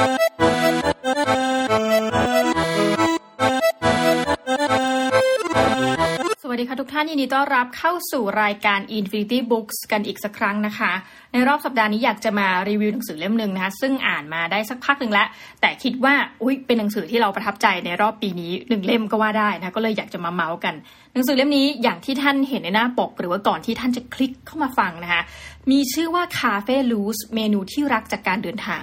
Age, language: 20-39, Thai